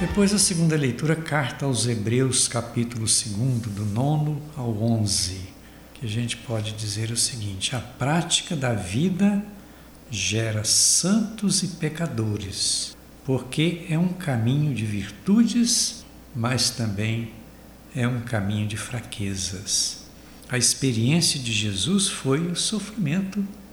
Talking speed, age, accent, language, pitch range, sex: 120 wpm, 60-79, Brazilian, Portuguese, 115-170 Hz, male